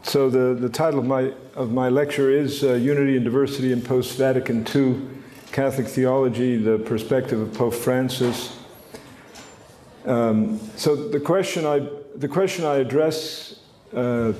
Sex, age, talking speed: male, 50-69, 140 wpm